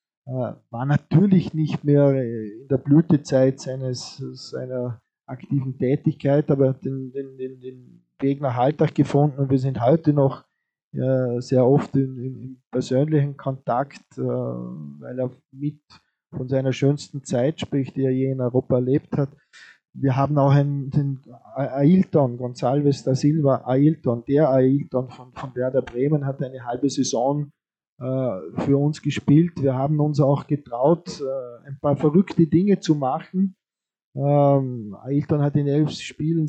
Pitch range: 130-145 Hz